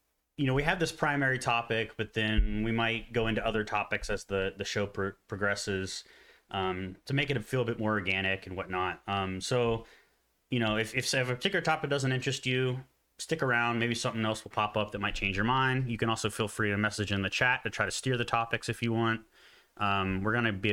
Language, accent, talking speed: English, American, 235 wpm